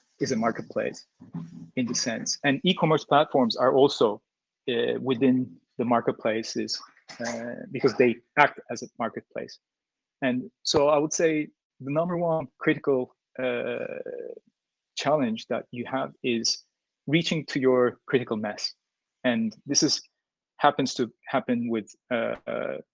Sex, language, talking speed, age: male, Vietnamese, 135 wpm, 30-49